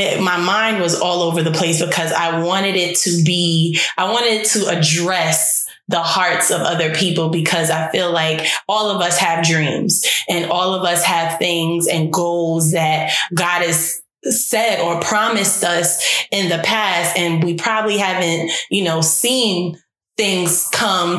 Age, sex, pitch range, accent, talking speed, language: 20-39, female, 165-185 Hz, American, 165 wpm, English